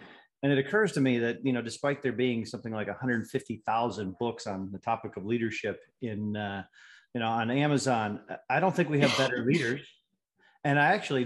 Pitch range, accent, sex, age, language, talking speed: 110-135 Hz, American, male, 40-59, English, 190 wpm